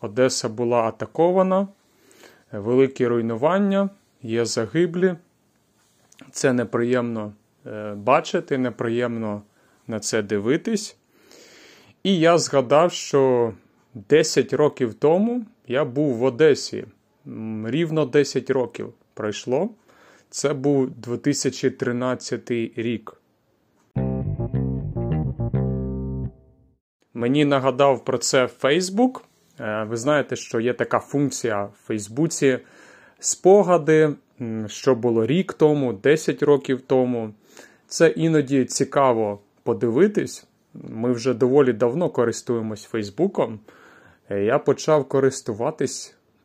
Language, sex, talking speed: Ukrainian, male, 85 wpm